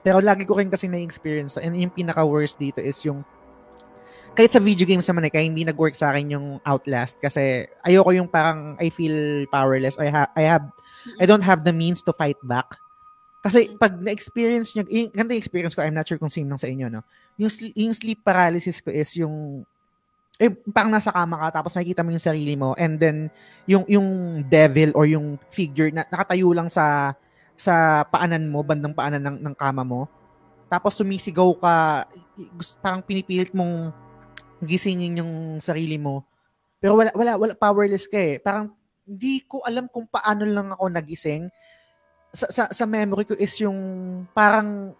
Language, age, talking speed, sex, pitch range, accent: Filipino, 20-39, 180 wpm, male, 150-205 Hz, native